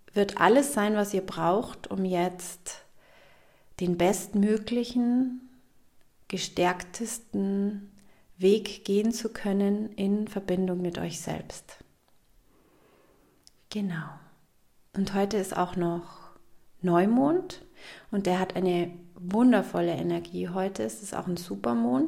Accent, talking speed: German, 105 wpm